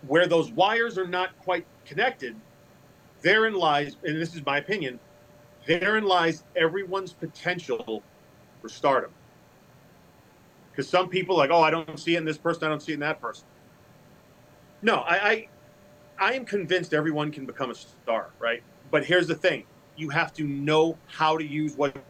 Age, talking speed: 40-59, 175 wpm